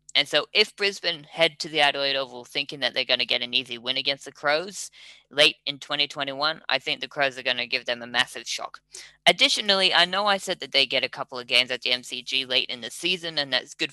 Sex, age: female, 20-39